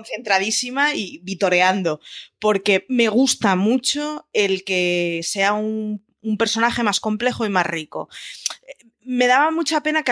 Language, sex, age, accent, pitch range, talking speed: Spanish, female, 20-39, Spanish, 180-250 Hz, 135 wpm